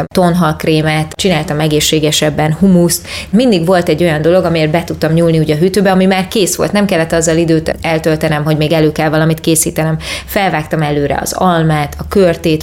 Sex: female